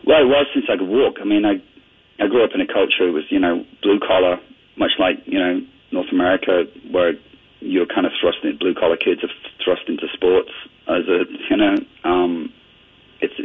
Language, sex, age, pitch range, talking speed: English, male, 30-49, 285-335 Hz, 205 wpm